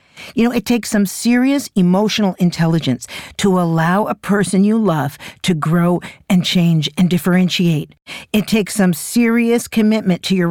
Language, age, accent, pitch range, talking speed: English, 50-69, American, 150-195 Hz, 155 wpm